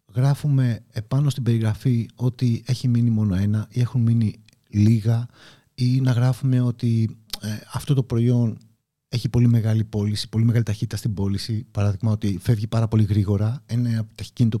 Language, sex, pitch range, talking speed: Greek, male, 110-130 Hz, 155 wpm